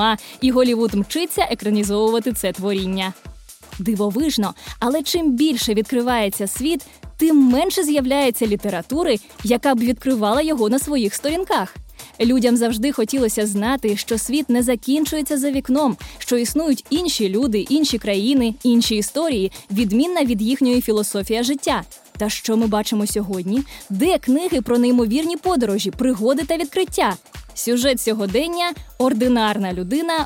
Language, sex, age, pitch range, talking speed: Ukrainian, female, 20-39, 215-285 Hz, 125 wpm